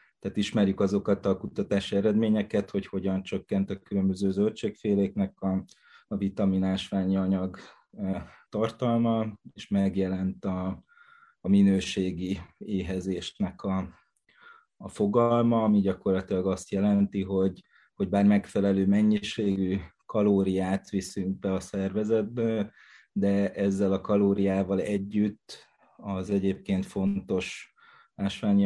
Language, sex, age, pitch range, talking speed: Hungarian, male, 30-49, 95-115 Hz, 100 wpm